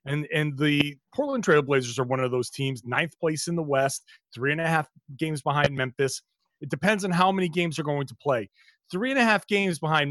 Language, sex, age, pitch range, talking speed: English, male, 30-49, 145-195 Hz, 225 wpm